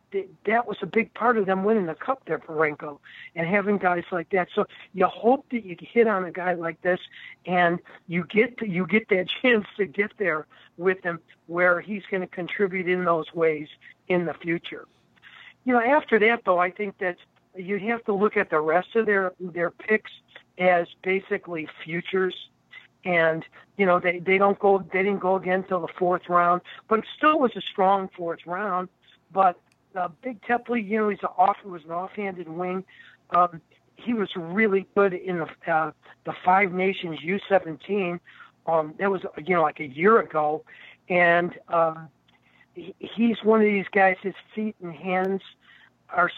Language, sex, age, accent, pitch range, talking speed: English, male, 60-79, American, 175-210 Hz, 190 wpm